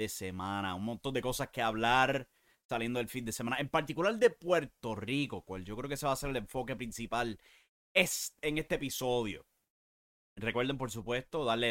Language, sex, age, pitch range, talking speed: English, male, 30-49, 115-190 Hz, 190 wpm